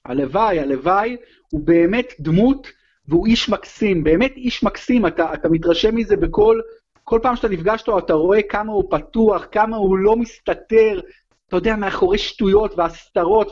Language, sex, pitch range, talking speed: Hebrew, male, 190-250 Hz, 155 wpm